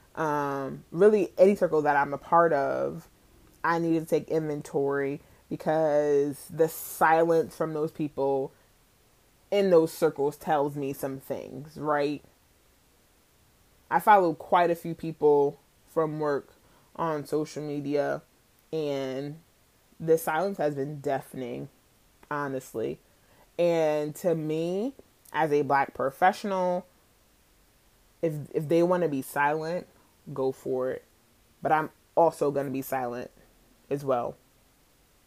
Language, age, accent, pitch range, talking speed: English, 20-39, American, 140-170 Hz, 125 wpm